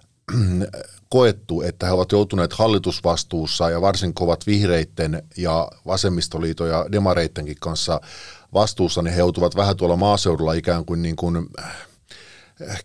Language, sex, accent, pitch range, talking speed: Finnish, male, native, 85-100 Hz, 125 wpm